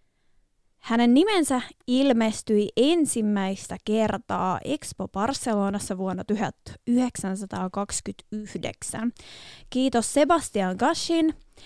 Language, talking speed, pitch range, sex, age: Finnish, 60 wpm, 200-250 Hz, female, 20-39